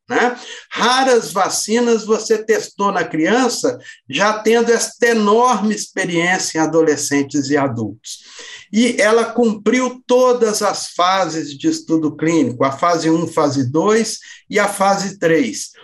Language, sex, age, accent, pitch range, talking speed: Portuguese, male, 60-79, Brazilian, 160-230 Hz, 130 wpm